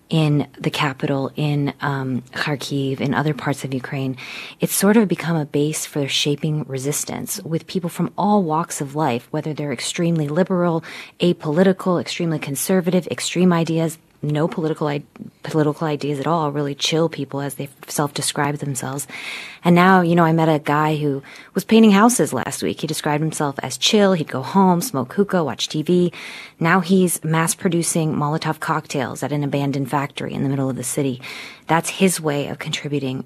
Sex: female